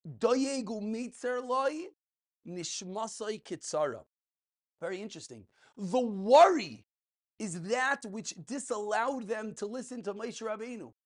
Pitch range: 185-245 Hz